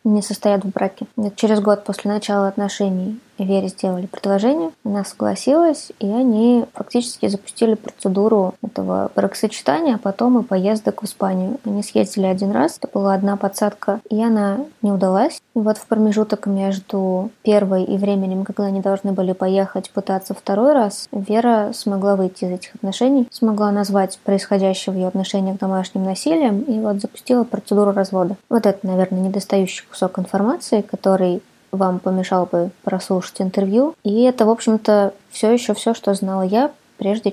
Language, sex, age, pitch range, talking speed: Russian, female, 20-39, 195-225 Hz, 155 wpm